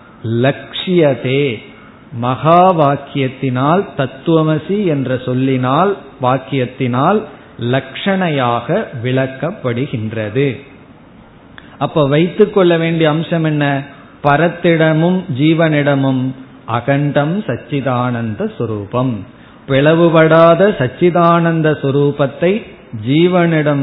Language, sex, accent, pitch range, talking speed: Tamil, male, native, 130-165 Hz, 60 wpm